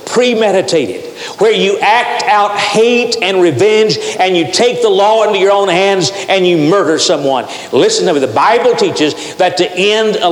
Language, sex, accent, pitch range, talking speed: English, male, American, 165-245 Hz, 180 wpm